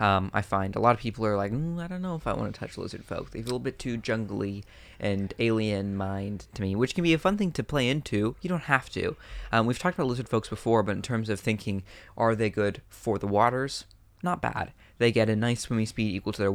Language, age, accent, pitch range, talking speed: English, 20-39, American, 100-120 Hz, 270 wpm